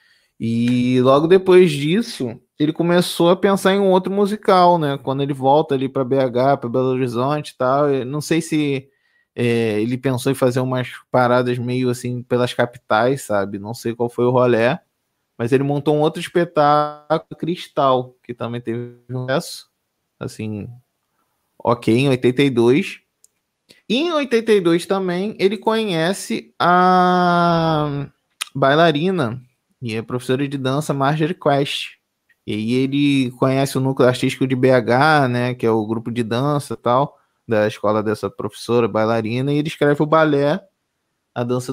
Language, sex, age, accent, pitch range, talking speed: Portuguese, male, 20-39, Brazilian, 120-155 Hz, 150 wpm